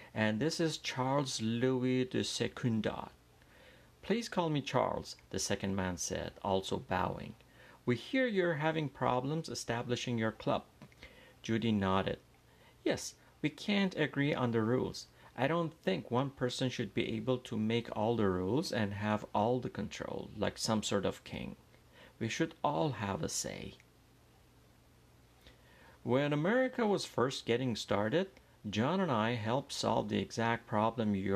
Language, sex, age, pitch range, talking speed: Persian, male, 50-69, 110-140 Hz, 150 wpm